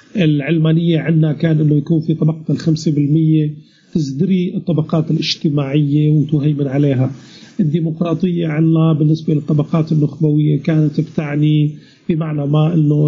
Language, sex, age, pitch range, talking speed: Arabic, male, 40-59, 145-165 Hz, 110 wpm